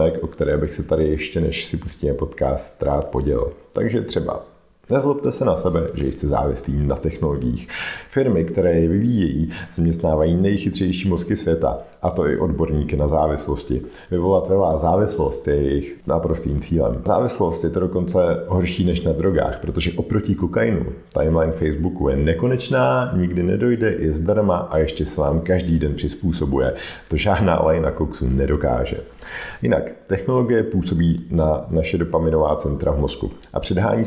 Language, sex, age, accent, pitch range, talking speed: Czech, male, 50-69, native, 75-95 Hz, 150 wpm